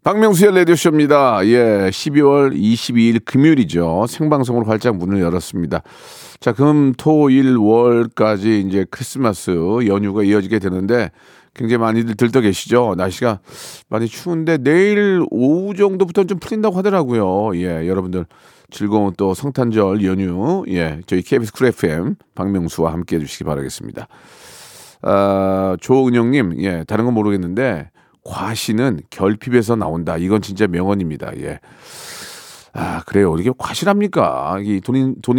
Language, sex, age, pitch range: Korean, male, 40-59, 95-135 Hz